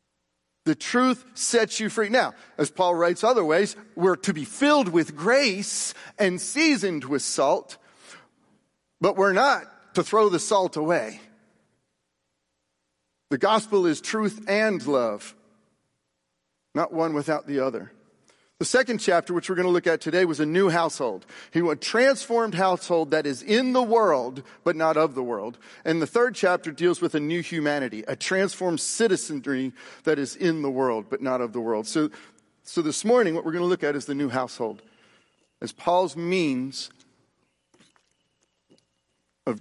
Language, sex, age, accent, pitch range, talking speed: English, male, 40-59, American, 140-200 Hz, 160 wpm